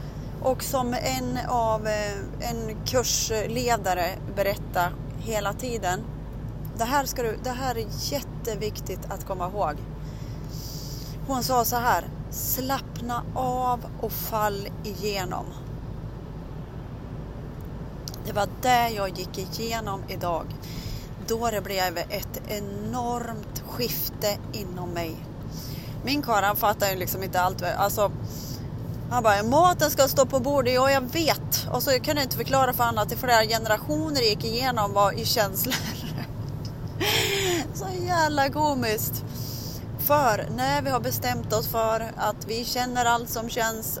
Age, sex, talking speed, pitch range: 30-49, female, 130 wpm, 145-225 Hz